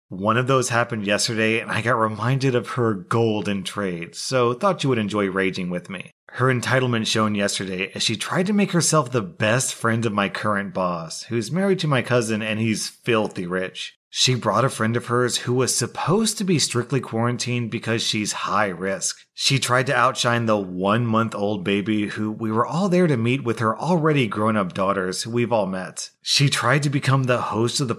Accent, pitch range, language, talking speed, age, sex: American, 105-135 Hz, English, 205 wpm, 30-49, male